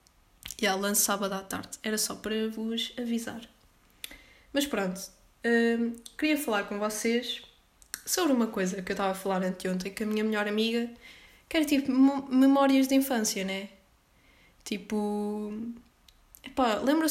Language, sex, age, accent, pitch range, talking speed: Portuguese, female, 20-39, Brazilian, 190-230 Hz, 145 wpm